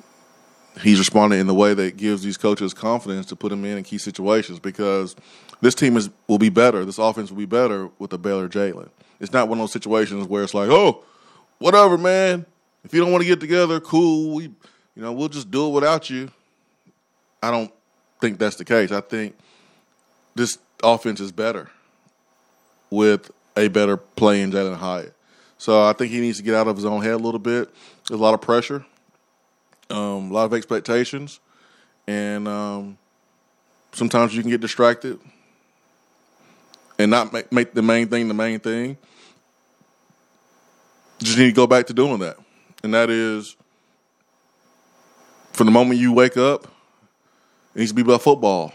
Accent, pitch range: American, 105-125 Hz